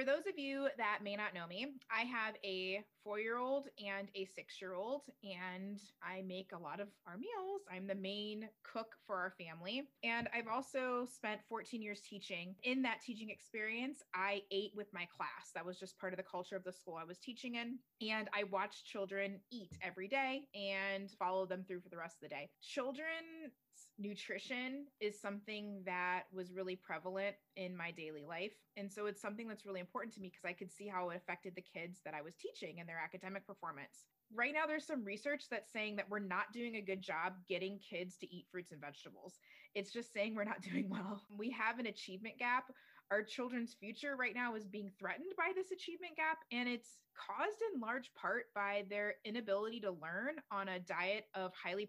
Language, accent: English, American